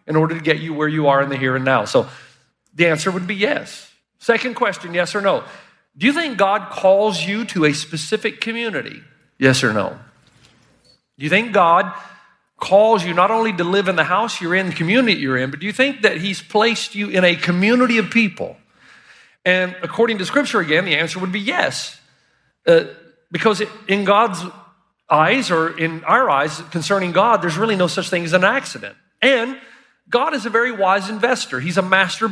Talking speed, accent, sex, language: 200 wpm, American, male, English